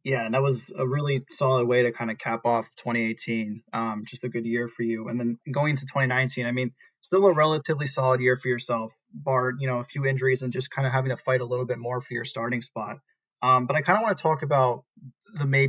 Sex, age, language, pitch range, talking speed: male, 20-39, English, 120-140 Hz, 255 wpm